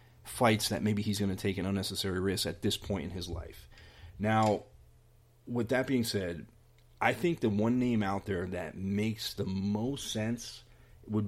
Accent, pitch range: American, 95-115 Hz